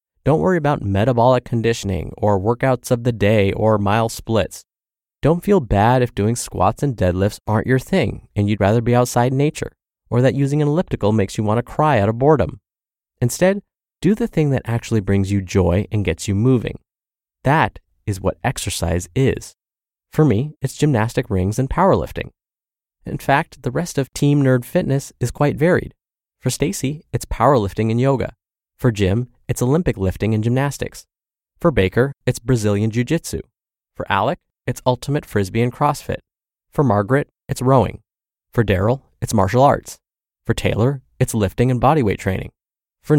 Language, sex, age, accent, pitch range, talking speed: English, male, 20-39, American, 105-140 Hz, 170 wpm